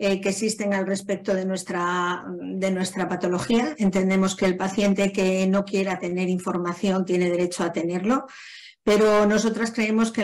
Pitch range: 185-210 Hz